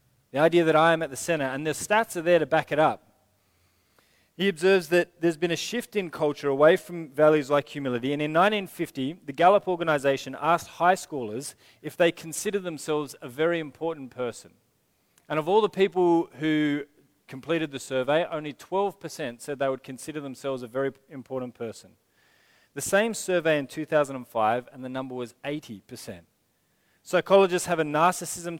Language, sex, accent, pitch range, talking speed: English, male, Australian, 135-170 Hz, 170 wpm